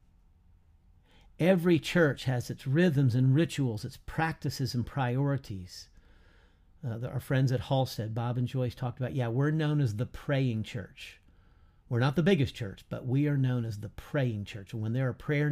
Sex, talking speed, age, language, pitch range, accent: male, 175 wpm, 50-69, English, 90-145 Hz, American